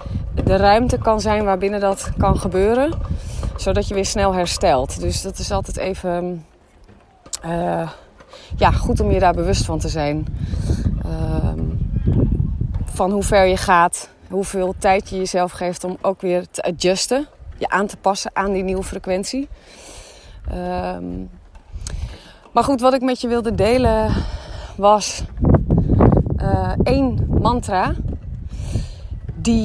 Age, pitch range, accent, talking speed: 30-49, 170-205 Hz, Dutch, 135 wpm